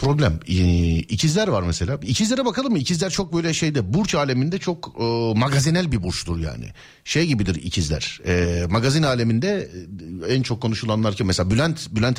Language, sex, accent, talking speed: Turkish, male, native, 160 wpm